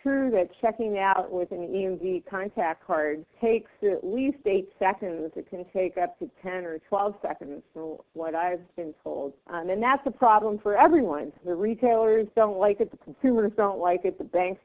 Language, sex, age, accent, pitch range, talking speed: English, female, 40-59, American, 175-220 Hz, 195 wpm